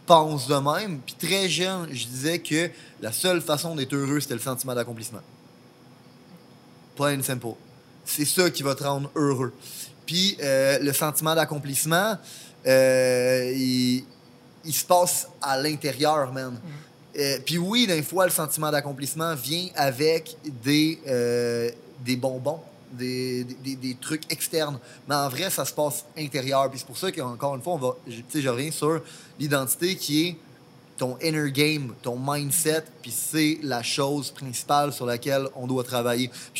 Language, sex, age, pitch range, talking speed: French, male, 20-39, 130-160 Hz, 155 wpm